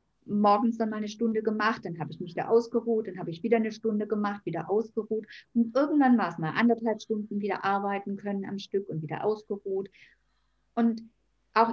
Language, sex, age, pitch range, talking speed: German, female, 50-69, 200-245 Hz, 195 wpm